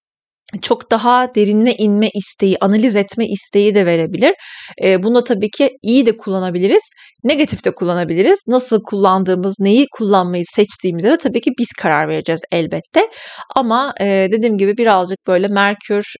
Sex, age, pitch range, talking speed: female, 30-49, 185-235 Hz, 140 wpm